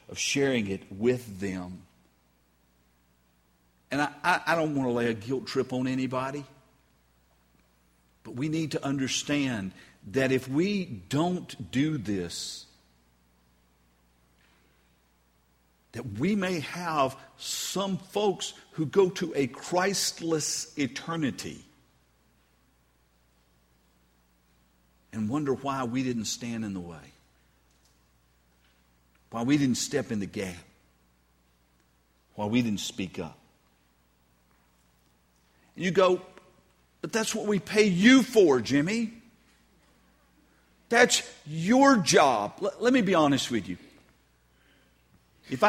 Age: 50-69